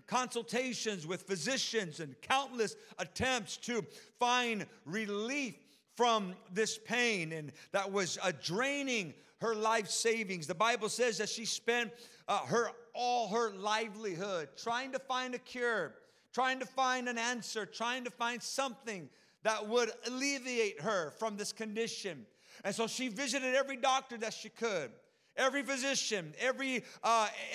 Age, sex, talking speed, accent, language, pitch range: 50-69, male, 140 wpm, American, English, 215-255 Hz